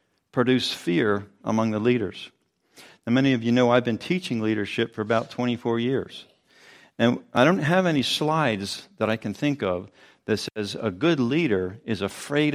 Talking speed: 170 wpm